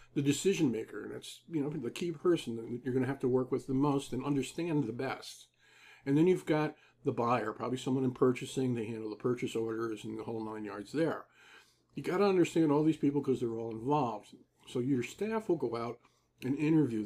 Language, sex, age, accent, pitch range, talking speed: English, male, 50-69, American, 120-145 Hz, 220 wpm